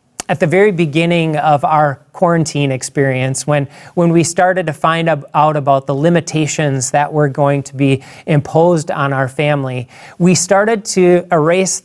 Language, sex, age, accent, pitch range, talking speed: English, male, 40-59, American, 140-170 Hz, 155 wpm